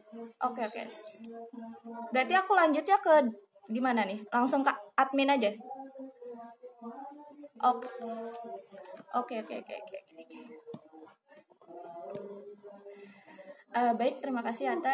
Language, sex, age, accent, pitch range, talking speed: Indonesian, female, 20-39, native, 230-285 Hz, 90 wpm